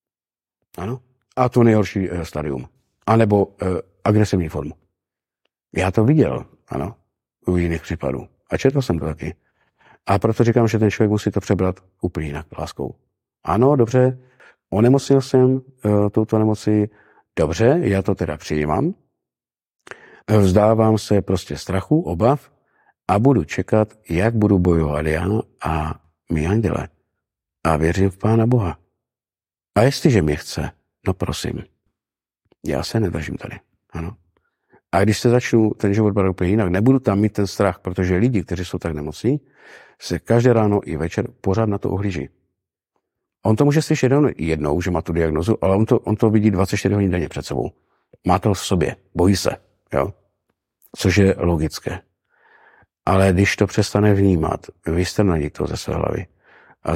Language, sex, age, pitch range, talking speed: Czech, male, 50-69, 90-110 Hz, 160 wpm